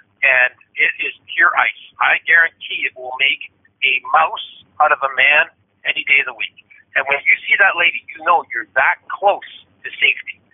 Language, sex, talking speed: English, male, 195 wpm